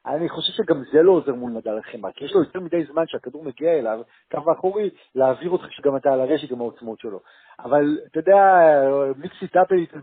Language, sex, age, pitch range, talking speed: Hebrew, male, 50-69, 145-195 Hz, 205 wpm